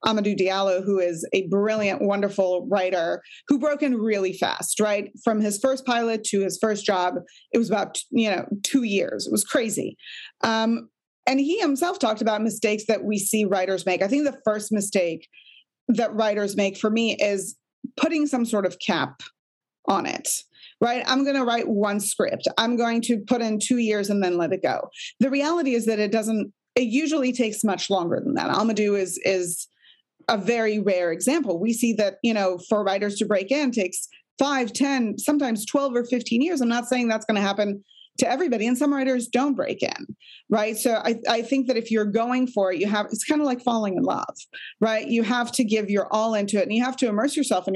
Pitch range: 205-255 Hz